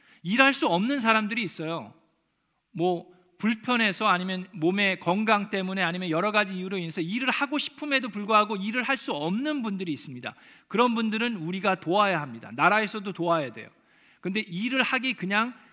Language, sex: Korean, male